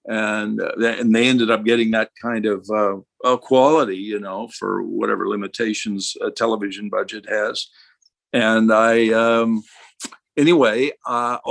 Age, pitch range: 50-69, 105-120 Hz